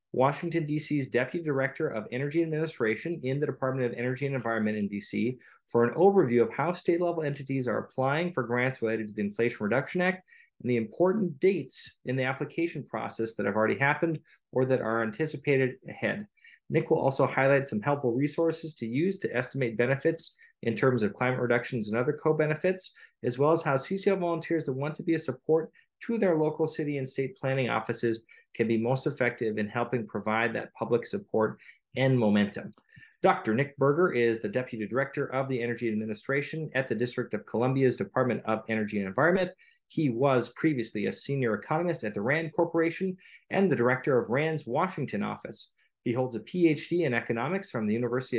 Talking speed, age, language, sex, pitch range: 185 wpm, 30-49, English, male, 120-160 Hz